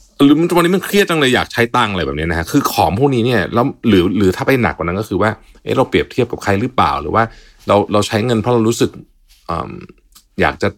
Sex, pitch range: male, 85-115 Hz